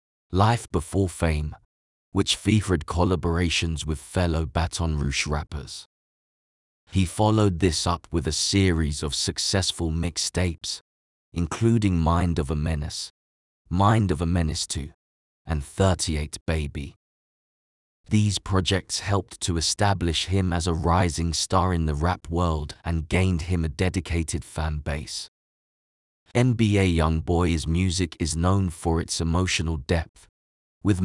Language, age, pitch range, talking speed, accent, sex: English, 20-39, 80-95 Hz, 130 wpm, British, male